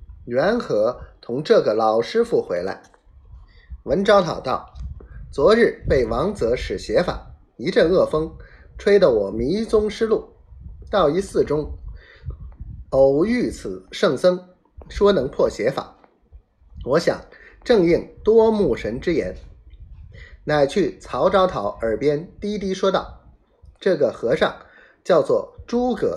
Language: Chinese